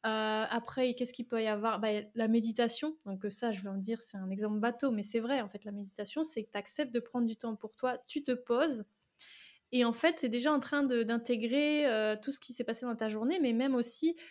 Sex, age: female, 20-39